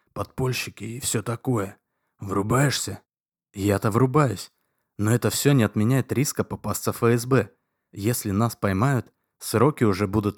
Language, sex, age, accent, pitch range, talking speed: Russian, male, 20-39, native, 100-120 Hz, 125 wpm